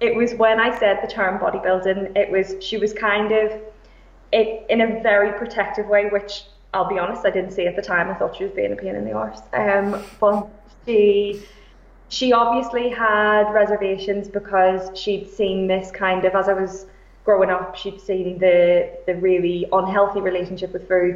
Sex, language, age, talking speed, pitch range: female, English, 20-39, 190 wpm, 185-205 Hz